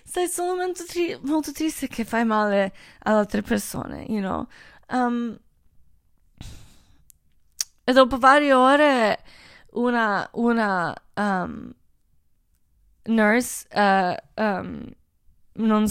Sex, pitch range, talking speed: female, 205-255 Hz, 75 wpm